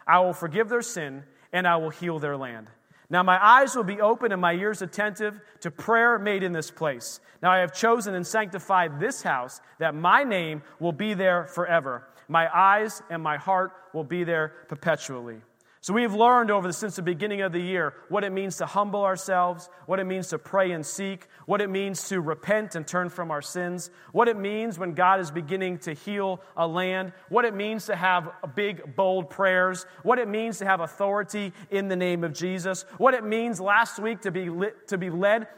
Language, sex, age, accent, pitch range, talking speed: English, male, 30-49, American, 175-215 Hz, 215 wpm